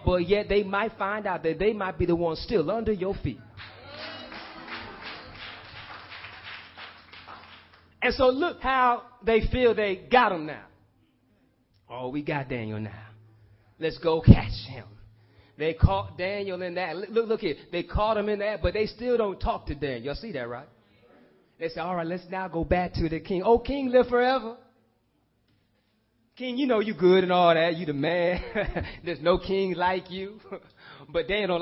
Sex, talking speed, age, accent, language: male, 180 wpm, 30-49, American, English